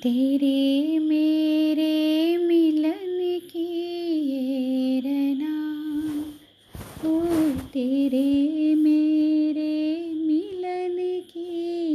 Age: 30-49